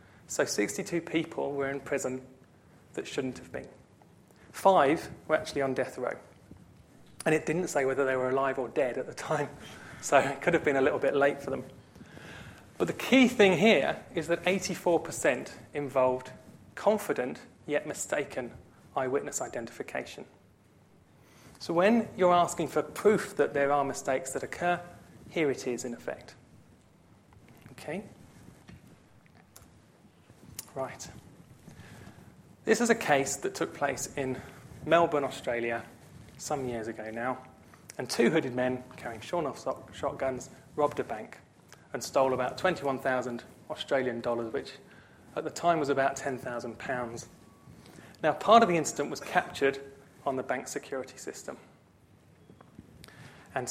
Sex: male